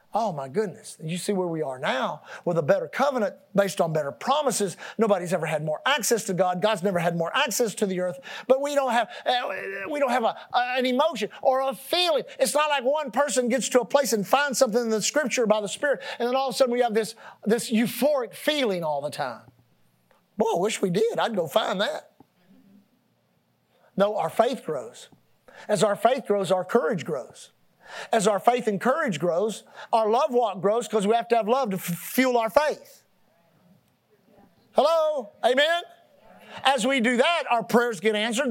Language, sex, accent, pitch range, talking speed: English, male, American, 205-275 Hz, 200 wpm